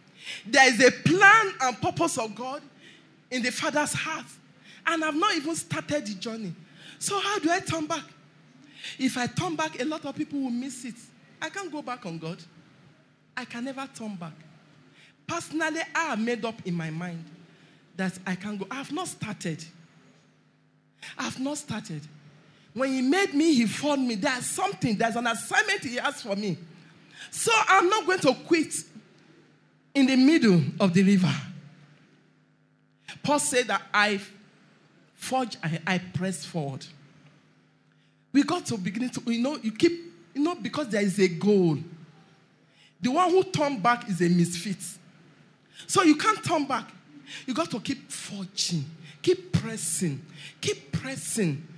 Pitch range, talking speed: 165-275 Hz, 160 wpm